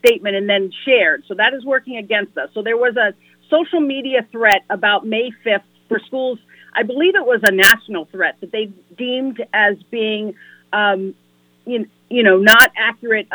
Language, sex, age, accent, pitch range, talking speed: English, female, 40-59, American, 200-240 Hz, 175 wpm